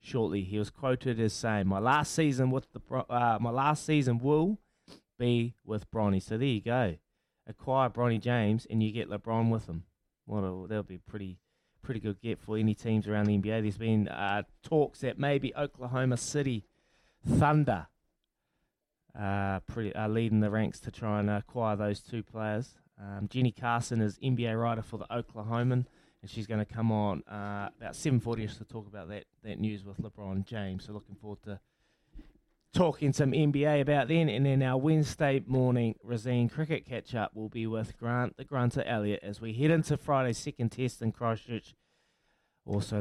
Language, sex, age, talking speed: English, male, 20-39, 180 wpm